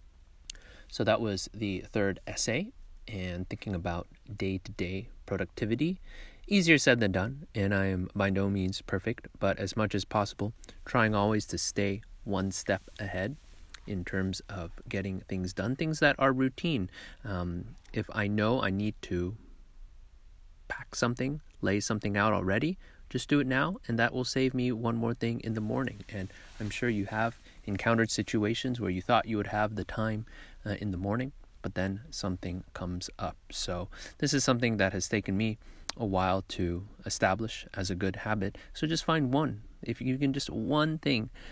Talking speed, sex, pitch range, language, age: 175 wpm, male, 95-115 Hz, English, 30-49